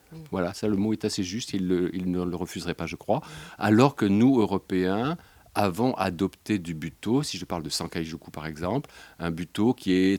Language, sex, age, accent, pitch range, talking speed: French, male, 50-69, French, 85-95 Hz, 205 wpm